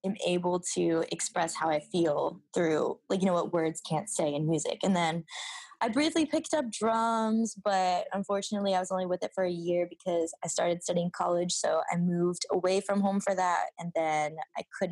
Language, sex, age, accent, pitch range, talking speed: English, female, 20-39, American, 170-210 Hz, 205 wpm